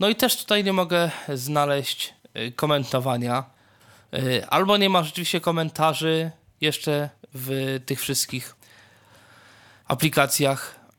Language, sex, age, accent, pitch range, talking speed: Polish, male, 20-39, native, 125-155 Hz, 100 wpm